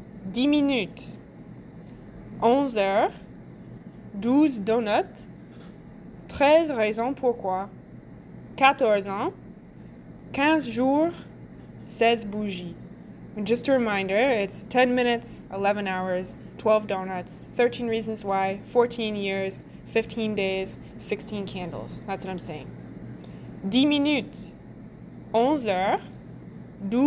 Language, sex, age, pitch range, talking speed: English, female, 20-39, 190-250 Hz, 95 wpm